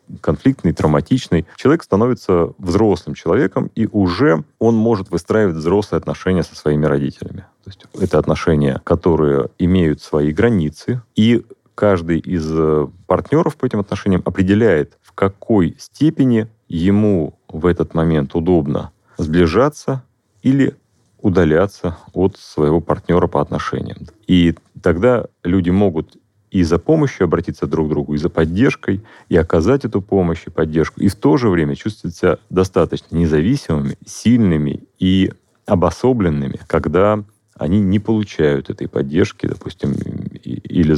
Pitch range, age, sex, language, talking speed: 80-105 Hz, 30-49, male, Russian, 130 wpm